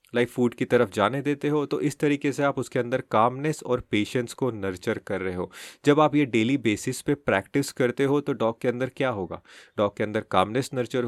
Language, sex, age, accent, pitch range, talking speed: Hindi, male, 30-49, native, 115-145 Hz, 235 wpm